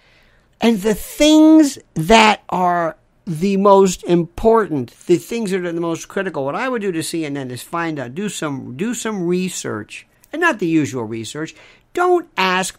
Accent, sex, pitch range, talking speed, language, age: American, male, 145-230 Hz, 170 wpm, English, 50-69